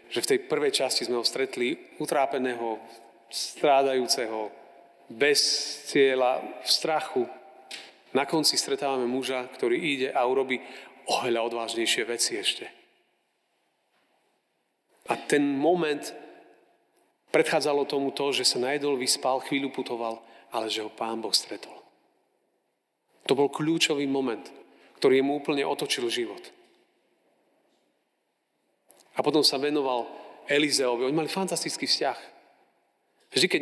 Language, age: Slovak, 40-59